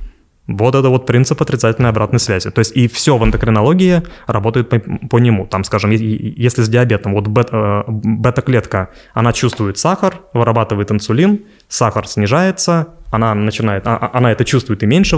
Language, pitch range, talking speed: Russian, 105-130 Hz, 155 wpm